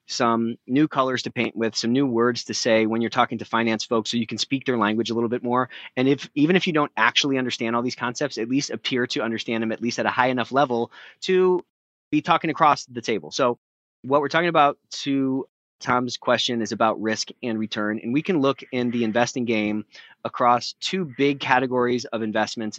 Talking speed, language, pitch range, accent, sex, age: 220 wpm, English, 115-140 Hz, American, male, 30-49